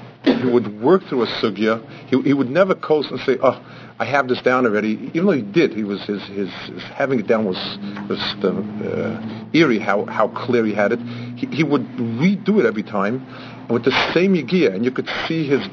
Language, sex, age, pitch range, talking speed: English, male, 50-69, 115-135 Hz, 220 wpm